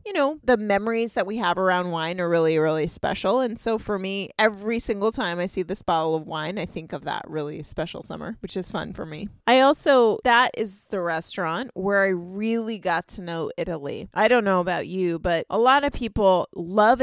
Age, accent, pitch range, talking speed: 20-39, American, 170-225 Hz, 220 wpm